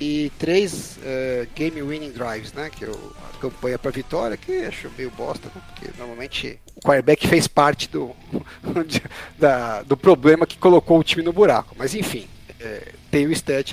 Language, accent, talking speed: Portuguese, Brazilian, 175 wpm